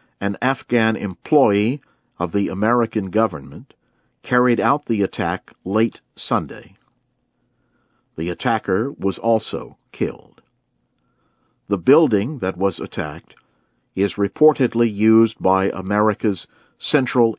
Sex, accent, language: male, American, English